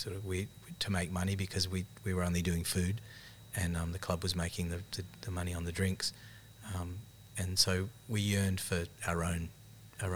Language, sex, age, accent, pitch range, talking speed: English, male, 30-49, Australian, 90-110 Hz, 215 wpm